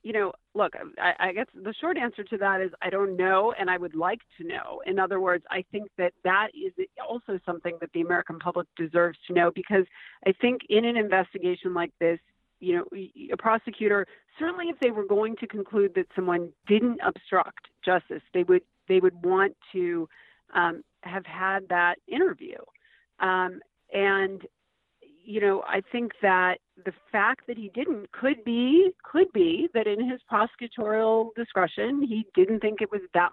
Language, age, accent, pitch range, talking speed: English, 40-59, American, 180-245 Hz, 180 wpm